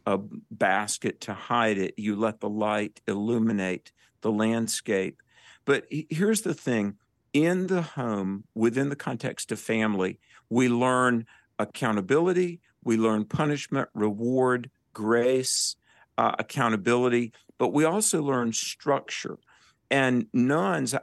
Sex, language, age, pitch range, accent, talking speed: male, English, 50-69, 110-140 Hz, American, 115 wpm